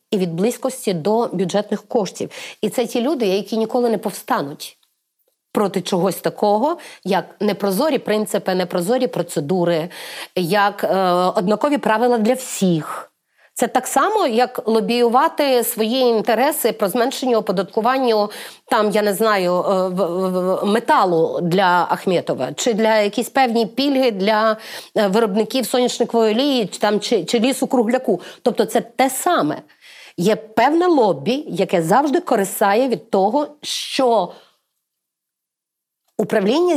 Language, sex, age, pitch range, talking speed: Ukrainian, female, 30-49, 195-255 Hz, 120 wpm